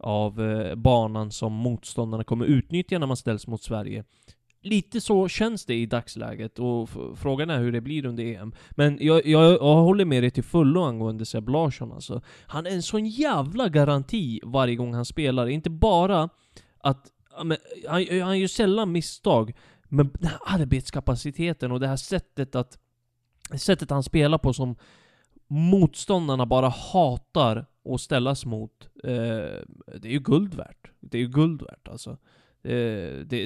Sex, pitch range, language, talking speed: male, 120-155 Hz, Swedish, 150 wpm